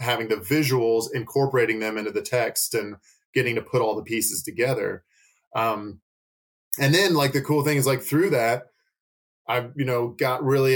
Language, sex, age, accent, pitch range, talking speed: English, male, 20-39, American, 110-135 Hz, 180 wpm